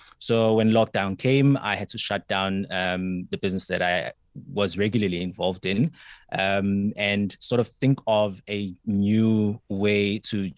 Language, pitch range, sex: English, 95-110 Hz, male